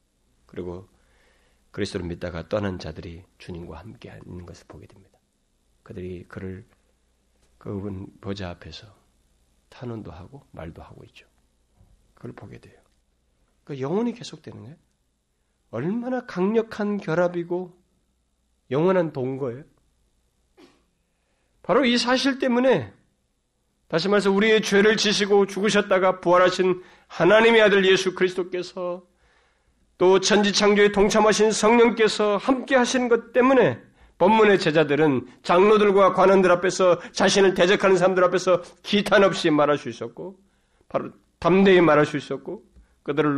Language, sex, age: Korean, male, 40-59